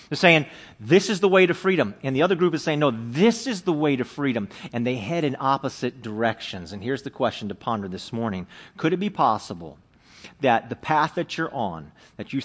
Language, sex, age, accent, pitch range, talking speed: English, male, 40-59, American, 130-210 Hz, 225 wpm